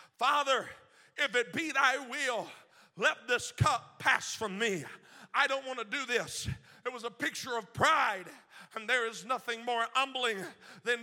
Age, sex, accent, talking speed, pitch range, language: 40-59, male, American, 170 wpm, 205-255 Hz, English